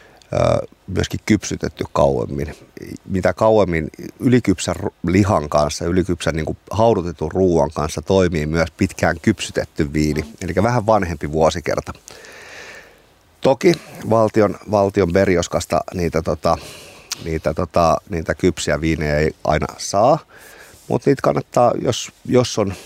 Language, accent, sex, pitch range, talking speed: Finnish, native, male, 75-95 Hz, 100 wpm